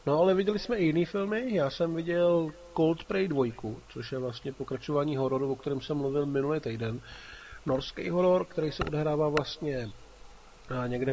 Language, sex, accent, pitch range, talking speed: Czech, male, native, 130-150 Hz, 160 wpm